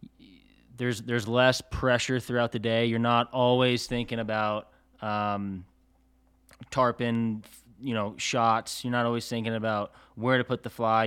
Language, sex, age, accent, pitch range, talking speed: English, male, 20-39, American, 110-130 Hz, 145 wpm